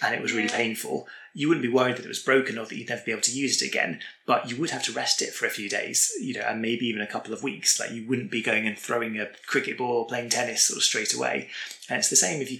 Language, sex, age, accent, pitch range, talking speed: English, male, 20-39, British, 110-125 Hz, 310 wpm